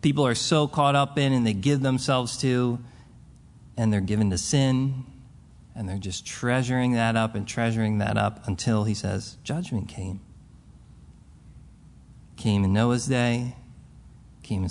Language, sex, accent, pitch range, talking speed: English, male, American, 100-130 Hz, 145 wpm